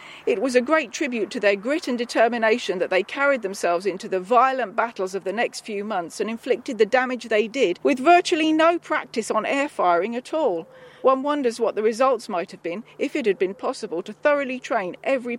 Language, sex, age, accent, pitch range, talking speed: English, female, 40-59, British, 205-280 Hz, 215 wpm